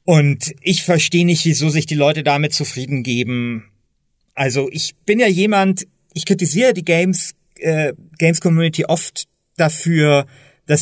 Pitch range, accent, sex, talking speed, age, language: 135-165 Hz, German, male, 140 wpm, 30-49, German